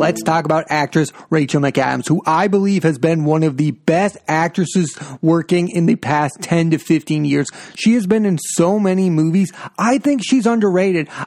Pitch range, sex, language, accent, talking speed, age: 155-190 Hz, male, English, American, 185 wpm, 30-49